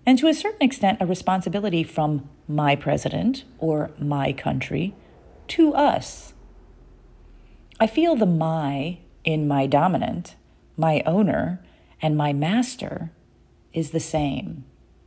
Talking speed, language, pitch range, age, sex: 120 wpm, English, 140-195 Hz, 40-59, female